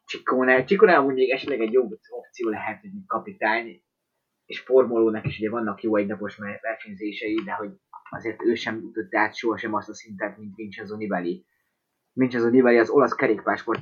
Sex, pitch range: male, 105-130 Hz